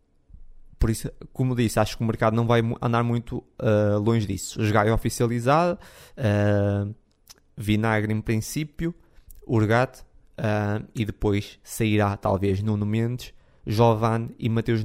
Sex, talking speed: male, 130 wpm